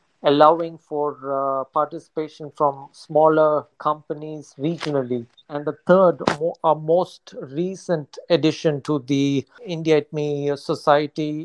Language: Hindi